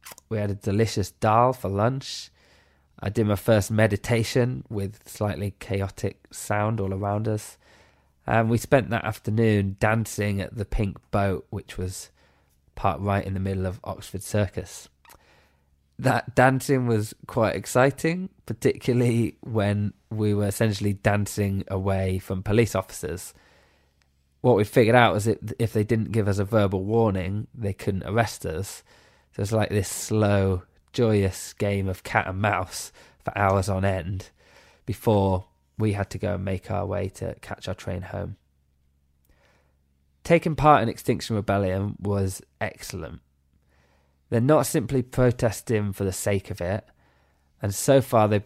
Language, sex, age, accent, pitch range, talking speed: English, male, 20-39, British, 95-115 Hz, 150 wpm